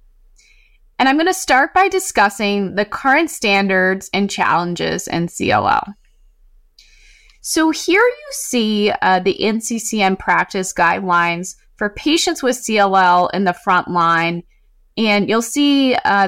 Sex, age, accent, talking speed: female, 30-49, American, 130 wpm